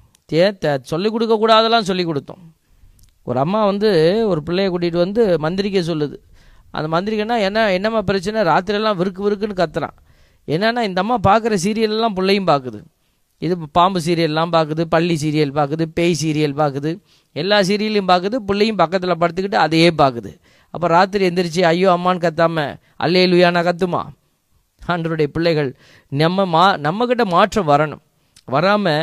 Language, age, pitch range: Tamil, 20-39, 160-205 Hz